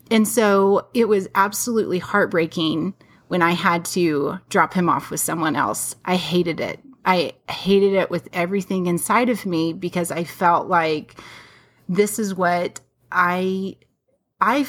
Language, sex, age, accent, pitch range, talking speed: English, female, 30-49, American, 175-200 Hz, 145 wpm